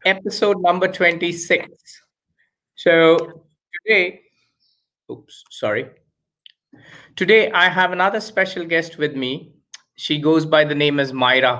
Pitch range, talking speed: 130-170 Hz, 115 wpm